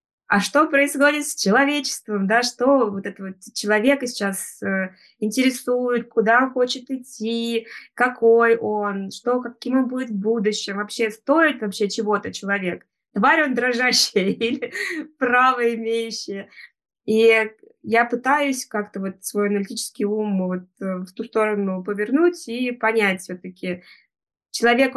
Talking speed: 130 wpm